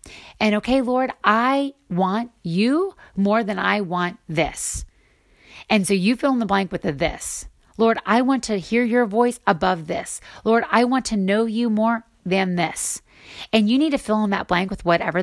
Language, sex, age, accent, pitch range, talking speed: English, female, 30-49, American, 180-235 Hz, 190 wpm